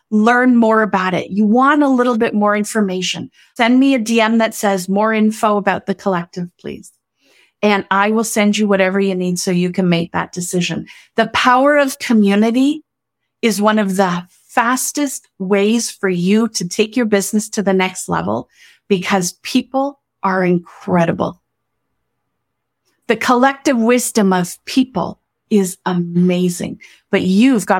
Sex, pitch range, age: female, 185-235 Hz, 40-59